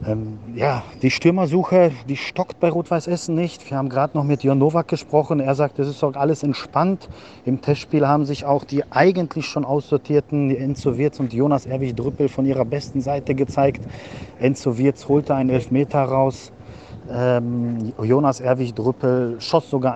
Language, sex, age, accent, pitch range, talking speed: German, male, 40-59, German, 115-140 Hz, 170 wpm